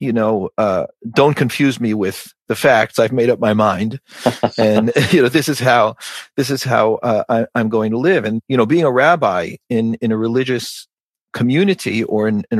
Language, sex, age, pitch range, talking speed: English, male, 40-59, 115-145 Hz, 205 wpm